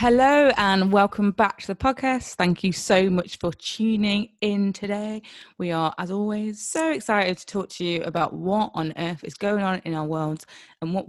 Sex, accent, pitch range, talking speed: female, British, 165-205 Hz, 200 wpm